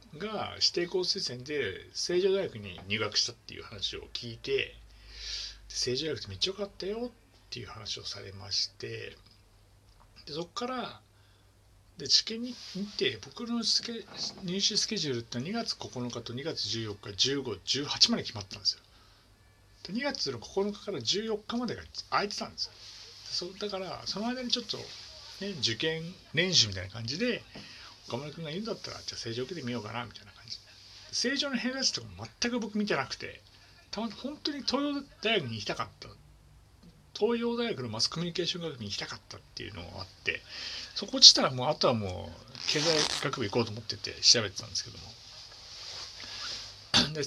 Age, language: 60-79, Japanese